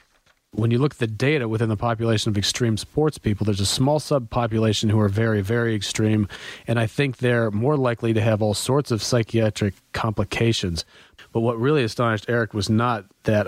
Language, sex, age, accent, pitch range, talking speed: English, male, 40-59, American, 100-120 Hz, 190 wpm